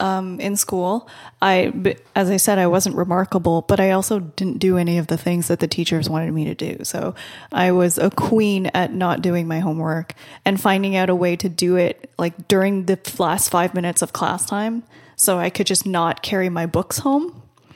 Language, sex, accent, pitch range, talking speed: English, female, American, 175-205 Hz, 210 wpm